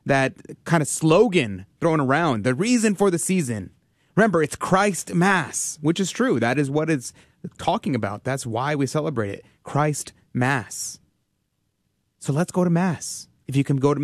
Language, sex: English, male